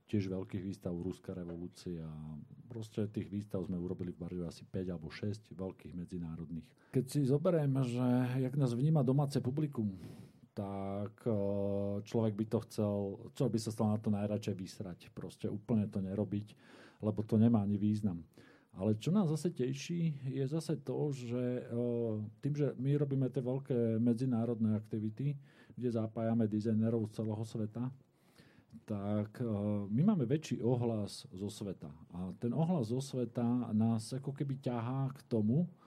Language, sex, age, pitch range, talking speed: Slovak, male, 40-59, 105-125 Hz, 155 wpm